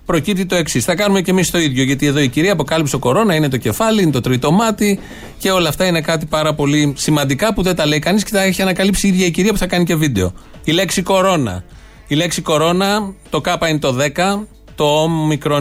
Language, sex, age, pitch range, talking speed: Greek, male, 30-49, 130-180 Hz, 240 wpm